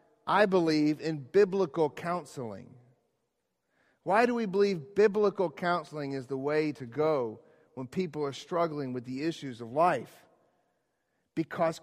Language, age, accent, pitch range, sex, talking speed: English, 40-59, American, 150-220 Hz, male, 130 wpm